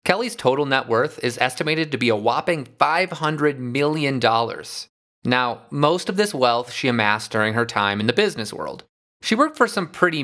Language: English